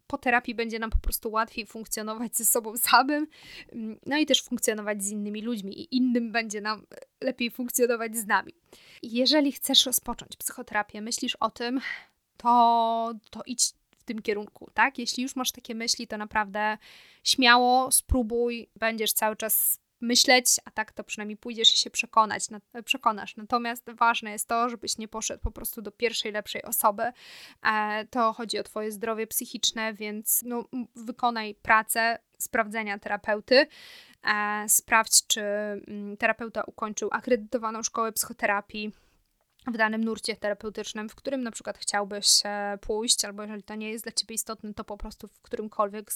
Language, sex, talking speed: Polish, female, 155 wpm